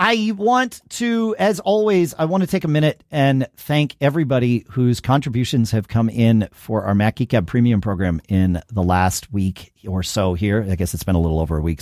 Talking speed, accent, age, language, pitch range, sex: 205 wpm, American, 40-59, English, 105-145 Hz, male